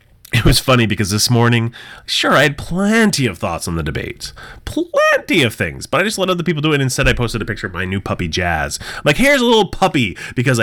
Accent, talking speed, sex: American, 235 wpm, male